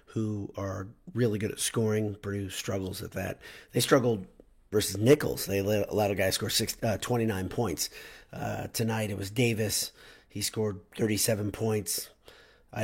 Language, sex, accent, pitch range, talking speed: English, male, American, 105-115 Hz, 165 wpm